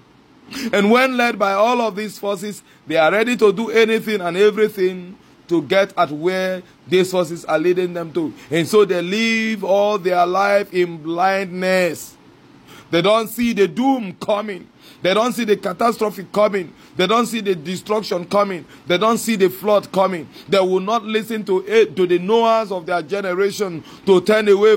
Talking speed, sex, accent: 180 wpm, male, Nigerian